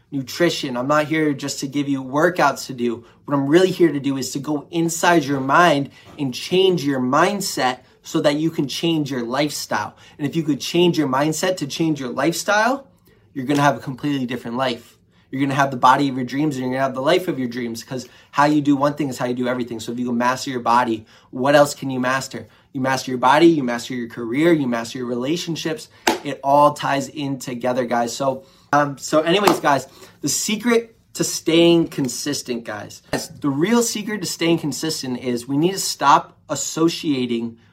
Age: 20-39